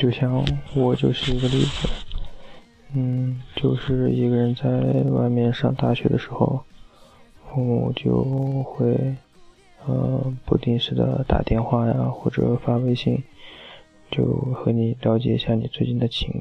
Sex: male